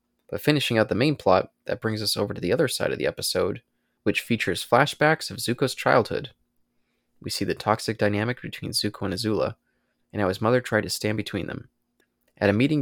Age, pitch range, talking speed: 20-39, 100-125 Hz, 205 wpm